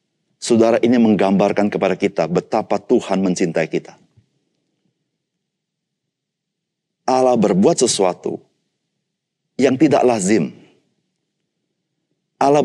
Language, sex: Indonesian, male